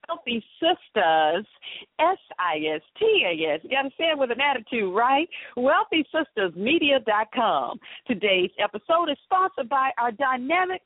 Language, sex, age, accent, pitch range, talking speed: English, female, 50-69, American, 210-300 Hz, 110 wpm